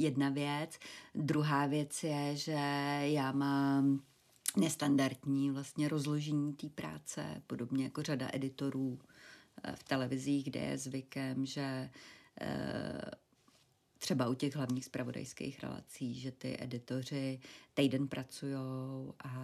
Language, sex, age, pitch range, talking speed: Czech, female, 40-59, 130-140 Hz, 110 wpm